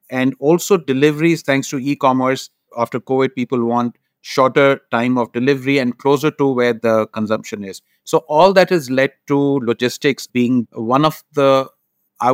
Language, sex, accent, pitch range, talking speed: English, male, Indian, 115-140 Hz, 160 wpm